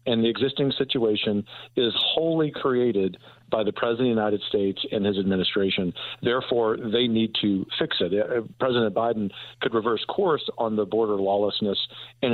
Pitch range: 100-125 Hz